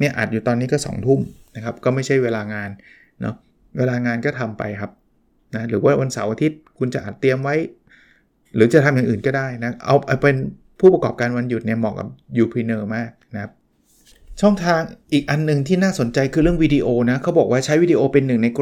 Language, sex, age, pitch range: Thai, male, 20-39, 120-150 Hz